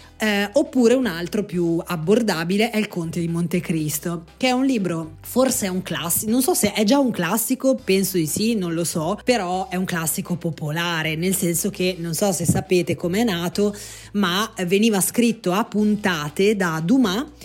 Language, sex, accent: Italian, female, native